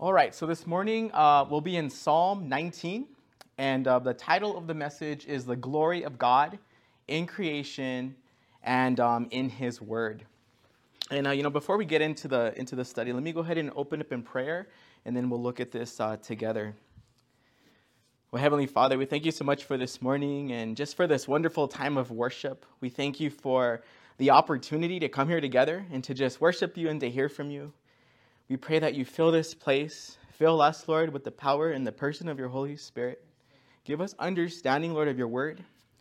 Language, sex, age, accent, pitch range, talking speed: English, male, 20-39, American, 125-155 Hz, 210 wpm